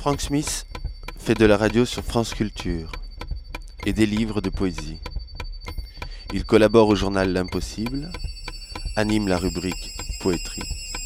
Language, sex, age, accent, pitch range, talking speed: French, male, 20-39, French, 85-110 Hz, 125 wpm